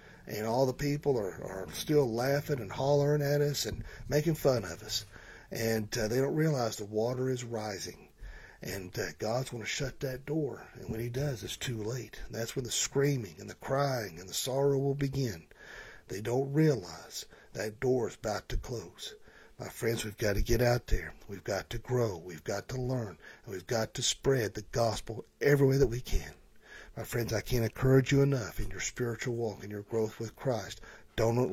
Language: English